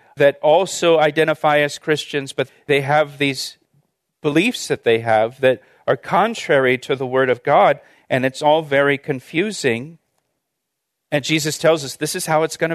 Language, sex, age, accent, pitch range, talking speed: English, male, 40-59, American, 140-175 Hz, 165 wpm